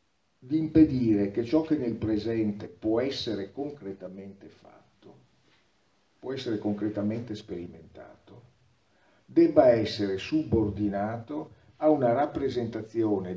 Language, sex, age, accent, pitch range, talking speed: Italian, male, 50-69, native, 105-145 Hz, 95 wpm